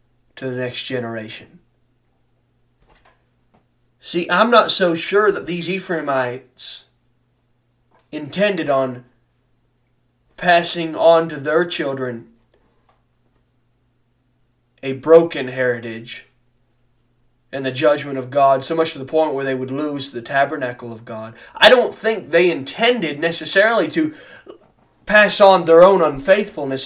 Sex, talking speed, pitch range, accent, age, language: male, 115 wpm, 120-150 Hz, American, 20-39, English